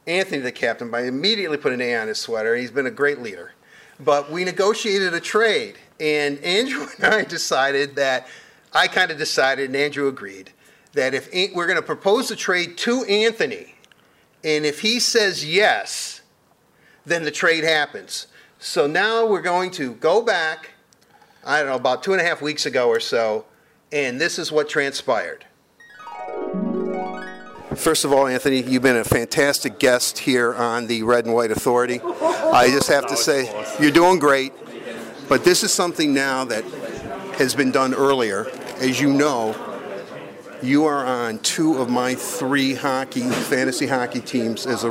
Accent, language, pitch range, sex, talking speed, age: American, English, 125-175 Hz, male, 170 wpm, 50-69